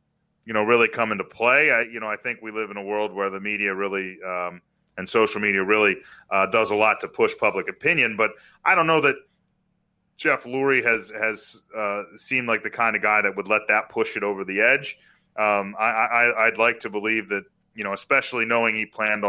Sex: male